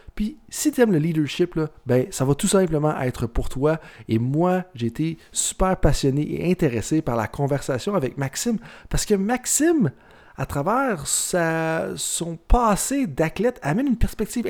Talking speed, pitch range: 155 wpm, 145-205 Hz